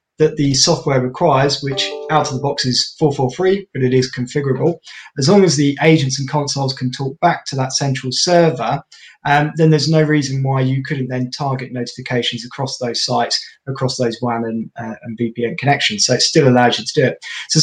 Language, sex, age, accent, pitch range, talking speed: English, male, 20-39, British, 125-150 Hz, 205 wpm